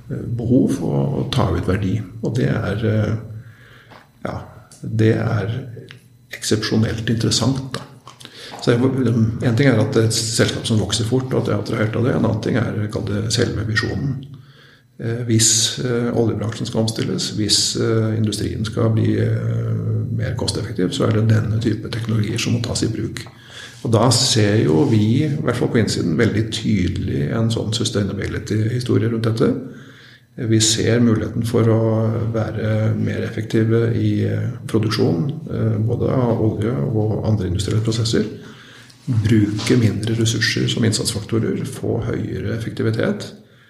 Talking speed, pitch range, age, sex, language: 135 wpm, 110-120 Hz, 50-69, male, English